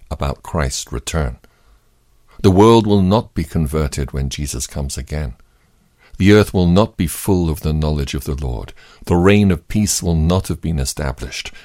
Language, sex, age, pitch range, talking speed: English, male, 60-79, 70-90 Hz, 175 wpm